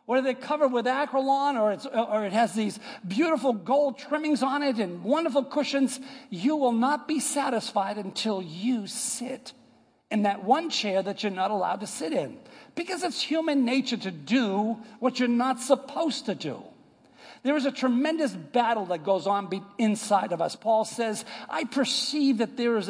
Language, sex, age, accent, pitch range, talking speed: English, male, 50-69, American, 225-275 Hz, 180 wpm